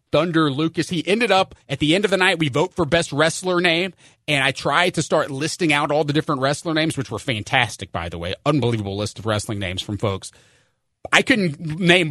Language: English